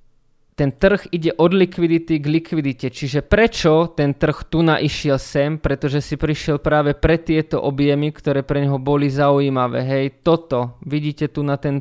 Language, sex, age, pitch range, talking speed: Slovak, male, 20-39, 140-165 Hz, 165 wpm